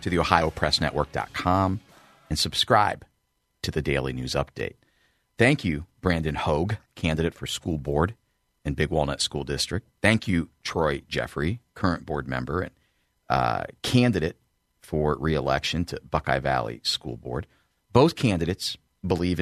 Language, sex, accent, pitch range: English, male, American, 75-105 Hz